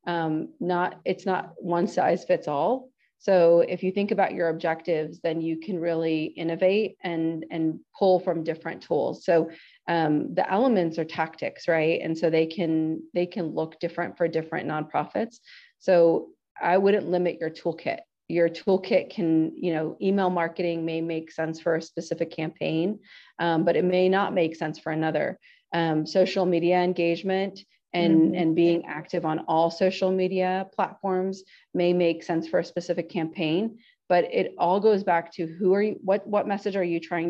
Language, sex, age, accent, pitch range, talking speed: English, female, 30-49, American, 165-190 Hz, 175 wpm